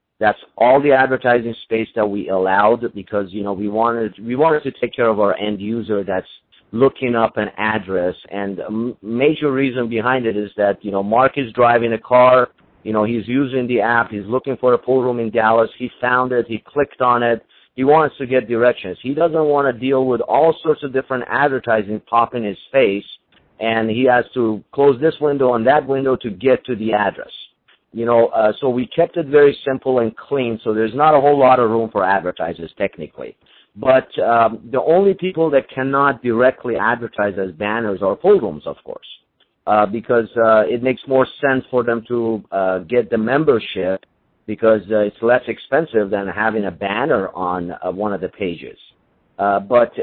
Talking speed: 200 wpm